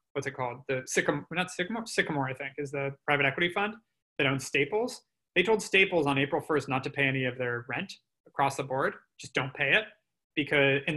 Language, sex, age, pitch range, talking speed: English, male, 20-39, 140-175 Hz, 220 wpm